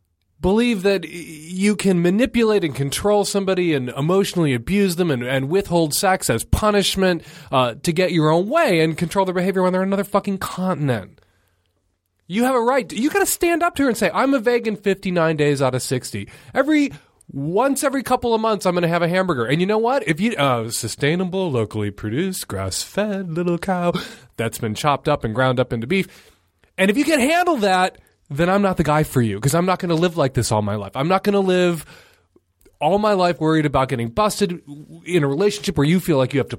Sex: male